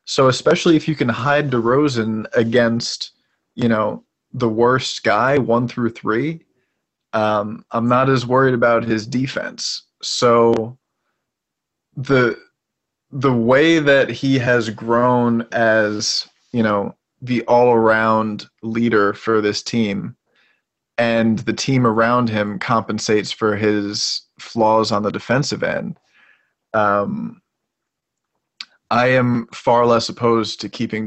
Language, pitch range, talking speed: English, 110-125 Hz, 120 wpm